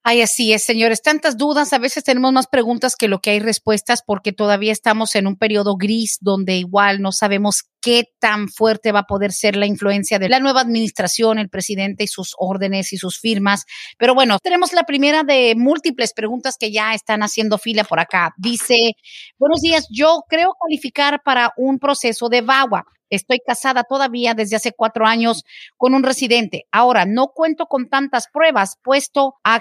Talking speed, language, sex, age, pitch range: 185 wpm, Spanish, female, 40-59, 215-270 Hz